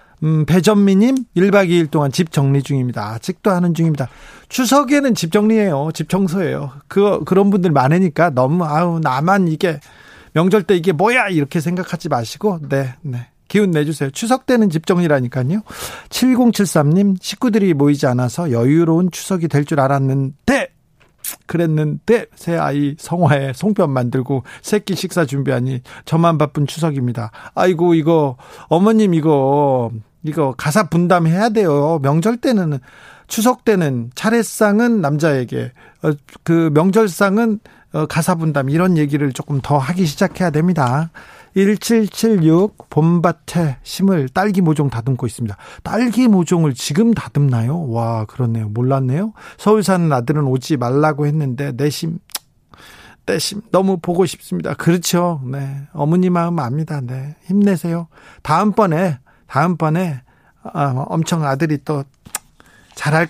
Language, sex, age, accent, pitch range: Korean, male, 40-59, native, 140-190 Hz